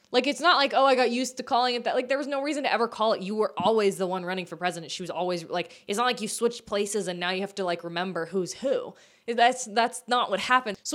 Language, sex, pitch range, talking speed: English, female, 180-250 Hz, 295 wpm